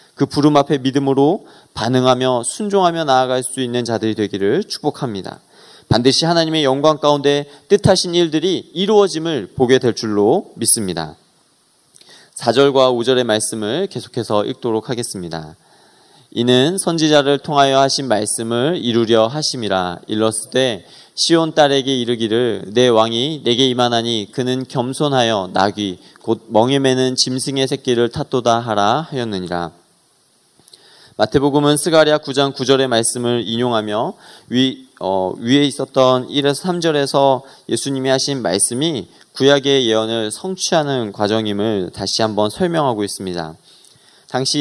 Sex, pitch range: male, 110-145 Hz